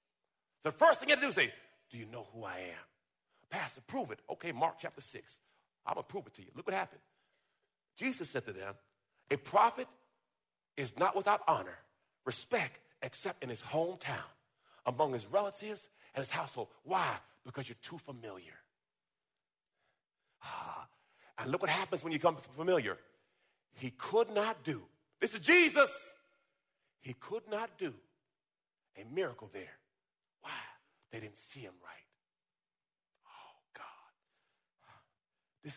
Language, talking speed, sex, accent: English, 150 wpm, male, American